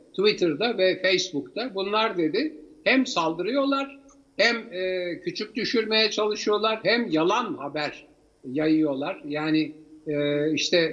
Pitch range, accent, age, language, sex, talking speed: 155-245 Hz, native, 60-79, Turkish, male, 105 wpm